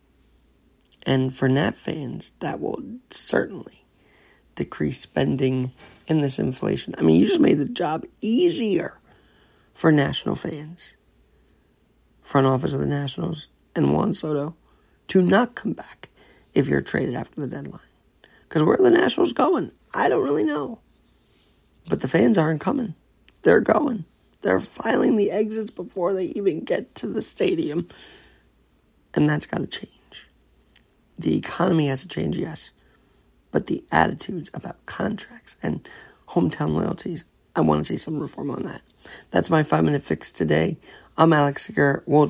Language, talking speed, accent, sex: English, 150 wpm, American, male